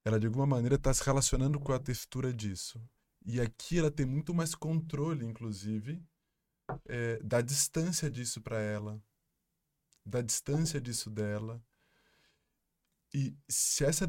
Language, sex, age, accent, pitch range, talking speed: Portuguese, male, 20-39, Brazilian, 125-155 Hz, 135 wpm